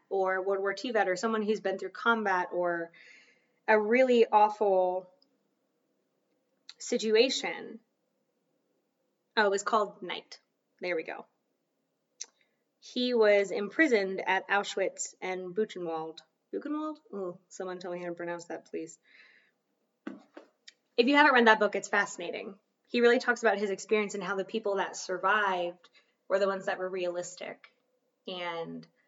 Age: 20-39